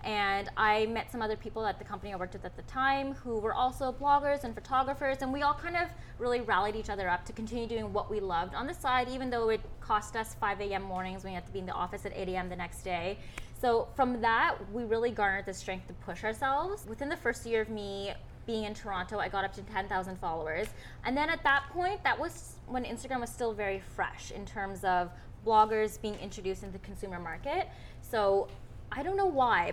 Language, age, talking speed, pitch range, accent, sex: English, 20-39, 235 wpm, 185-240 Hz, American, female